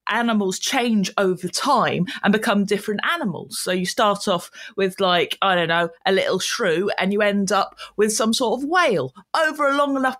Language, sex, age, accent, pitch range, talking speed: English, female, 30-49, British, 200-270 Hz, 195 wpm